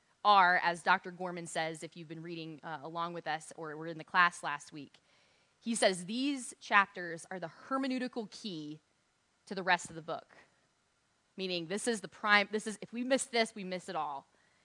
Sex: female